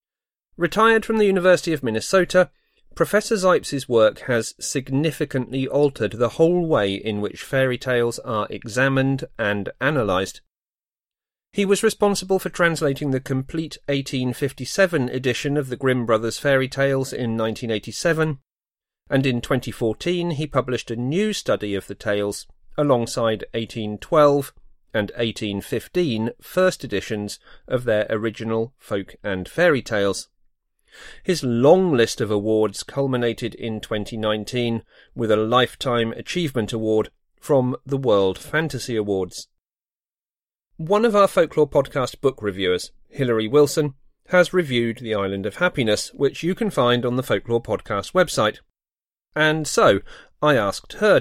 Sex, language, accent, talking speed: male, English, British, 130 wpm